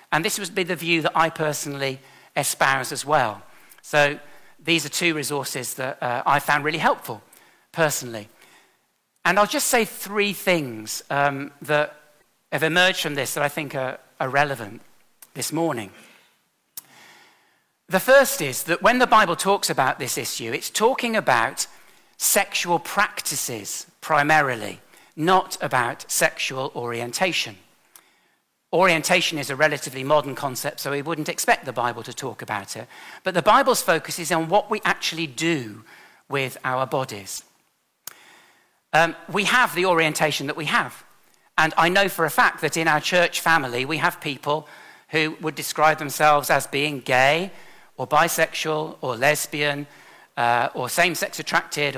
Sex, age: male, 50-69